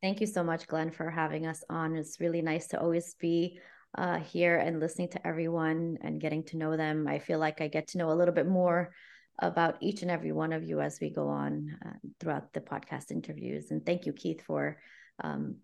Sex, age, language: female, 30-49, English